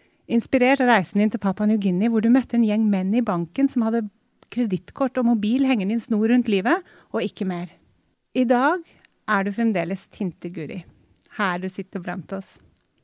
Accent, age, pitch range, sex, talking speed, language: Swedish, 30-49, 190-235 Hz, female, 190 wpm, English